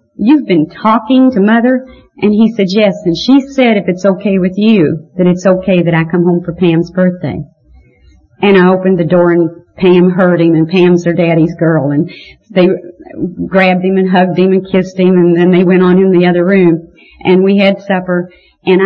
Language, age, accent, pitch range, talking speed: English, 40-59, American, 175-210 Hz, 205 wpm